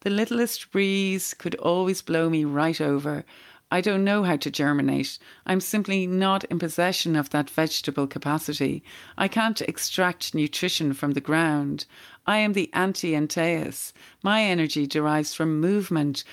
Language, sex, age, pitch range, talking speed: English, female, 40-59, 150-185 Hz, 145 wpm